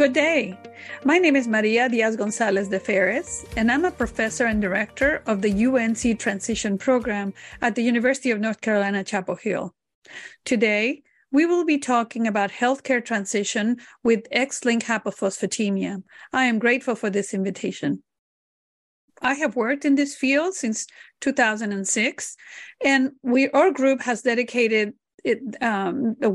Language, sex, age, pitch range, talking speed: English, female, 40-59, 215-265 Hz, 140 wpm